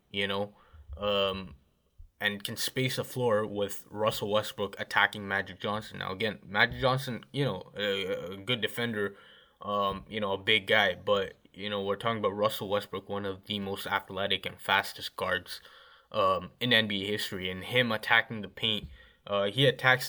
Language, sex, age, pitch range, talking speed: English, male, 20-39, 100-115 Hz, 175 wpm